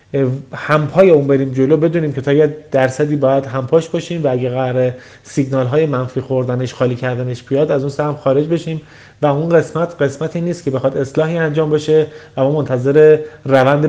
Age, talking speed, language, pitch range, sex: 30-49, 170 wpm, Persian, 130-170 Hz, male